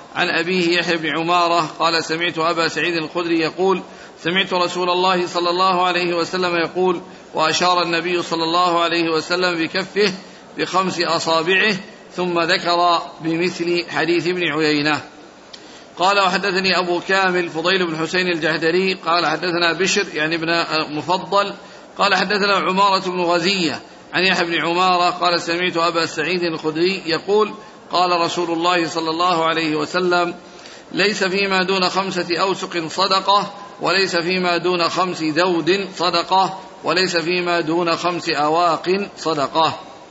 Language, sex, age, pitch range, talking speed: Arabic, male, 50-69, 170-185 Hz, 130 wpm